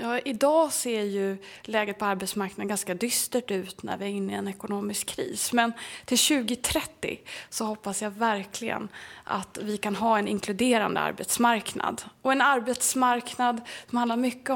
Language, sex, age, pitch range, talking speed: Swedish, female, 20-39, 215-250 Hz, 155 wpm